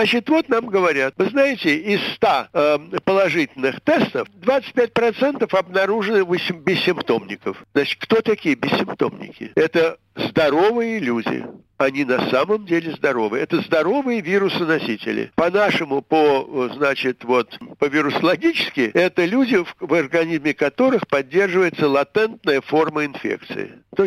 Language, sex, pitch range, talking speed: Russian, male, 155-225 Hz, 110 wpm